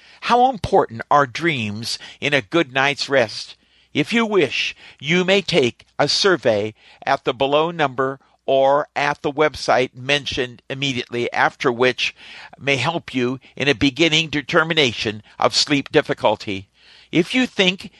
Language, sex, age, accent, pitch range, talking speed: English, male, 50-69, American, 120-170 Hz, 140 wpm